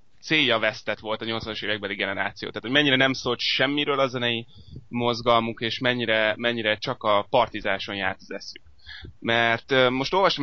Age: 20-39